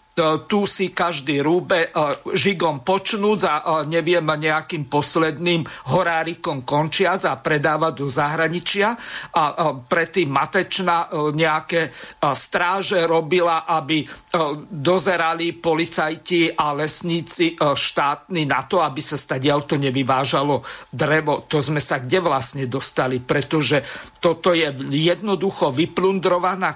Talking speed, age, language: 105 wpm, 50-69, Slovak